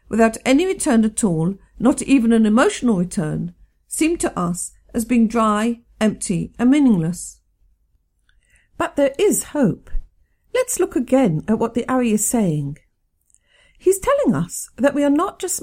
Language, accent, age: English, British, 50-69